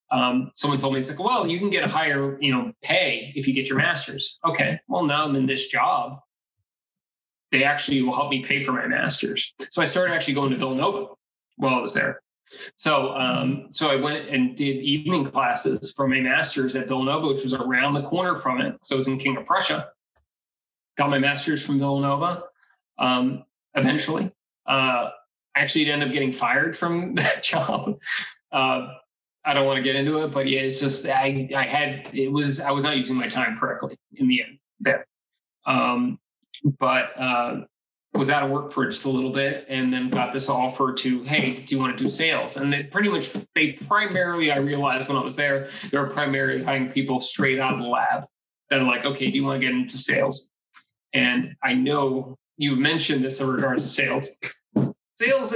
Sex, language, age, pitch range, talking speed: male, English, 20-39, 130-150 Hz, 205 wpm